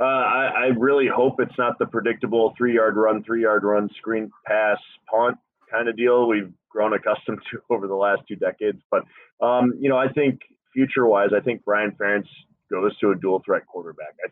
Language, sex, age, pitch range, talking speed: English, male, 20-39, 95-115 Hz, 190 wpm